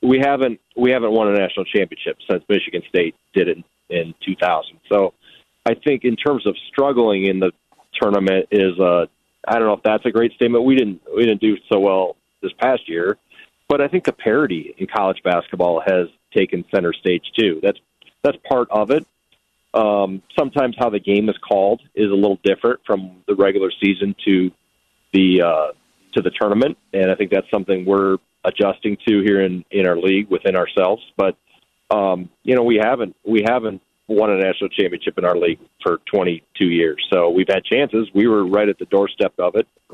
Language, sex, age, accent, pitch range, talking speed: English, male, 30-49, American, 95-115 Hz, 195 wpm